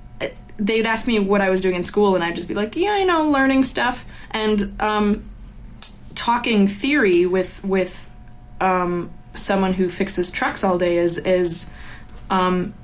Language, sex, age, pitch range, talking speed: English, female, 20-39, 170-200 Hz, 165 wpm